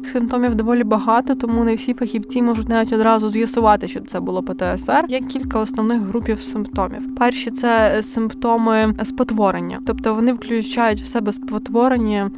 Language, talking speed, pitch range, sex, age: Ukrainian, 150 wpm, 215-245 Hz, female, 20-39